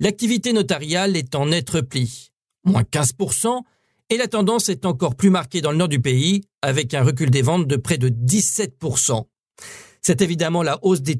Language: French